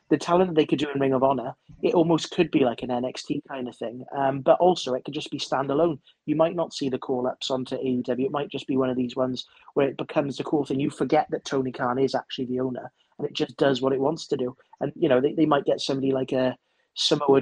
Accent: British